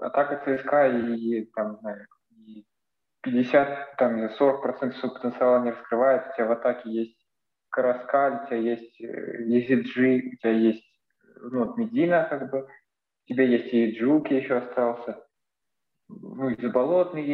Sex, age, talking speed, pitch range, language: male, 20-39, 120 wpm, 115-140 Hz, Russian